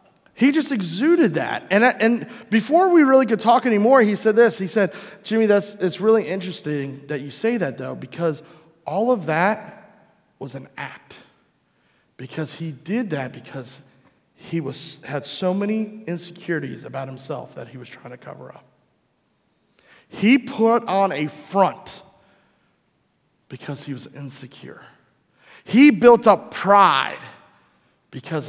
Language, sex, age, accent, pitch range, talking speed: English, male, 30-49, American, 145-235 Hz, 145 wpm